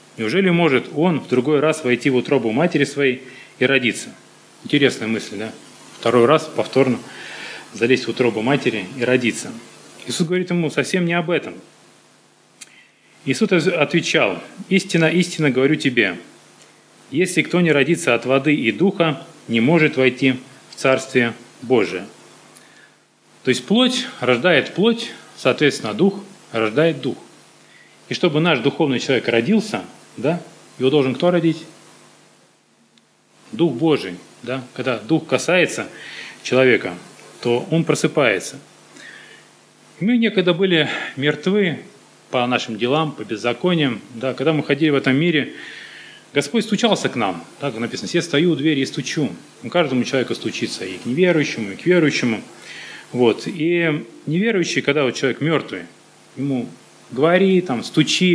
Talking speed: 135 wpm